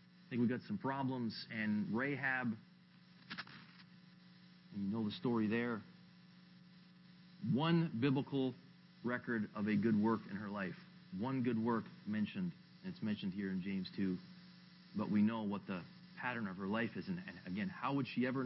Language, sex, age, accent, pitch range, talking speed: English, male, 40-59, American, 125-180 Hz, 165 wpm